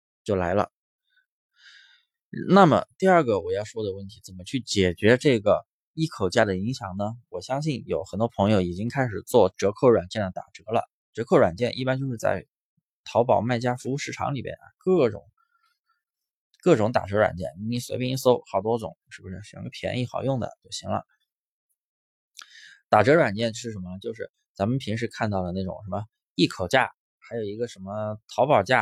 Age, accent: 20-39, native